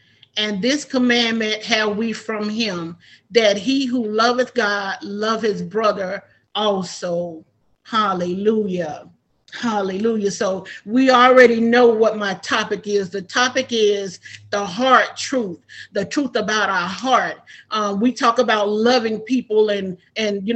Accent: American